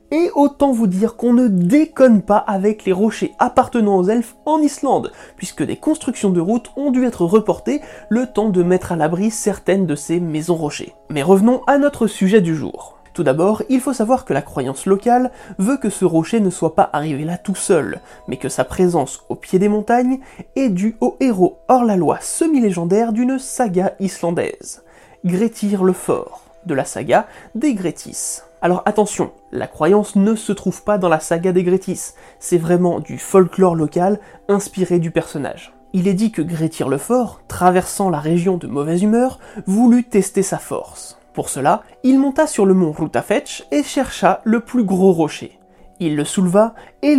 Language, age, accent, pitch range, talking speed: French, 30-49, French, 175-235 Hz, 185 wpm